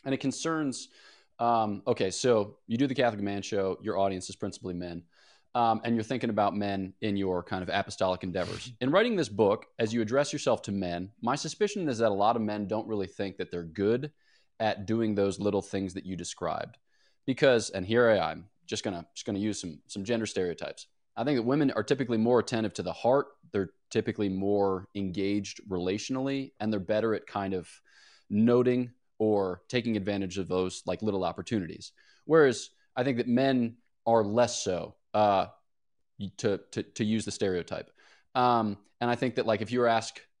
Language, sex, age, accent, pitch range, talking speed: English, male, 20-39, American, 100-120 Hz, 195 wpm